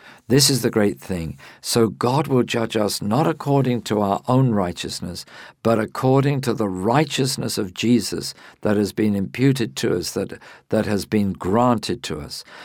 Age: 50-69